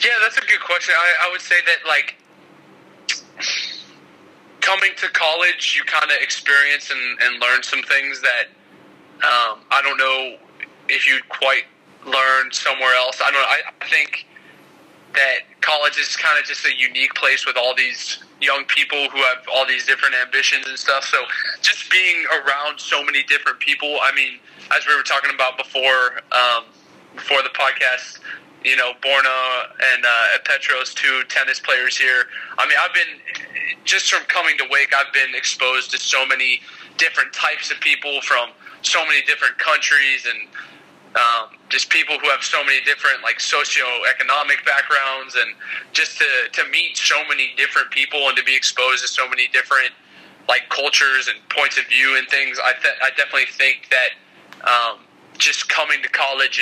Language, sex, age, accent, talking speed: English, male, 20-39, American, 175 wpm